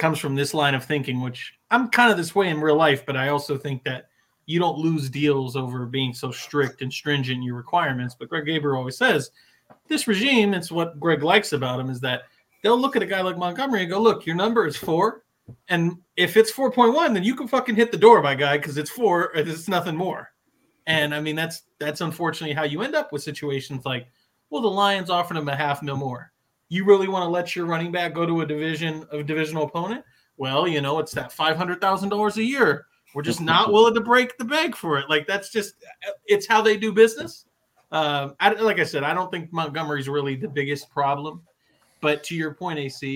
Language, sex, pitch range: English, male, 140-185 Hz